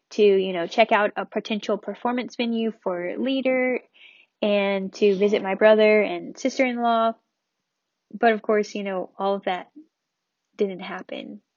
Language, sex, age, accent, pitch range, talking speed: English, female, 10-29, American, 210-255 Hz, 145 wpm